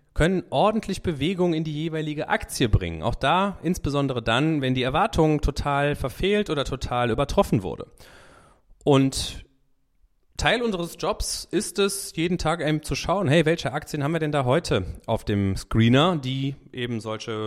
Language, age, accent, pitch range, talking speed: German, 30-49, German, 100-150 Hz, 160 wpm